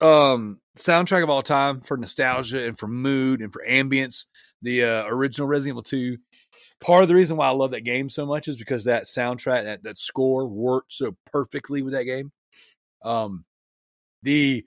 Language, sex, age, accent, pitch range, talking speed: English, male, 30-49, American, 115-150 Hz, 185 wpm